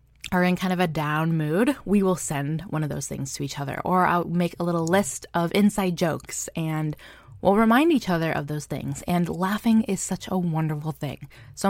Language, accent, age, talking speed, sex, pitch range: English, American, 20-39, 215 wpm, female, 155-195 Hz